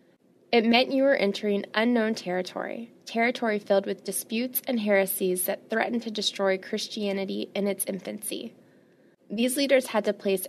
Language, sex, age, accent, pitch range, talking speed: English, female, 20-39, American, 190-230 Hz, 150 wpm